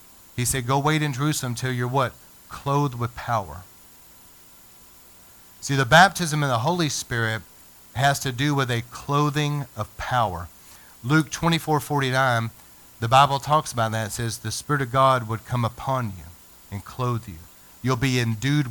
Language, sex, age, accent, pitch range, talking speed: English, male, 40-59, American, 105-145 Hz, 160 wpm